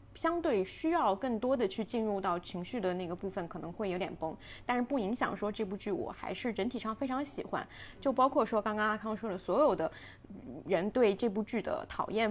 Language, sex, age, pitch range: Chinese, female, 20-39, 195-265 Hz